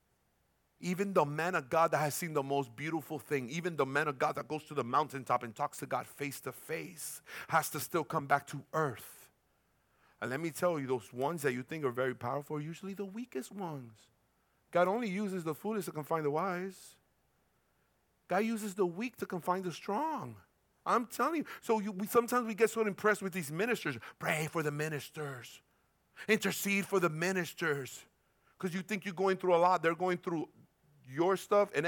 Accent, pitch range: American, 150-210 Hz